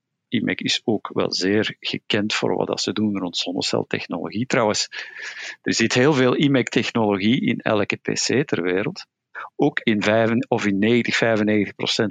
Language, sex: Dutch, male